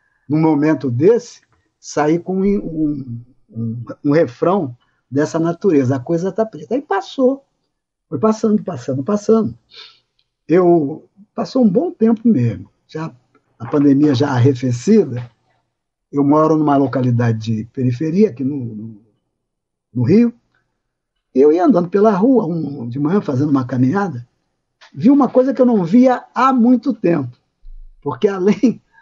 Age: 60-79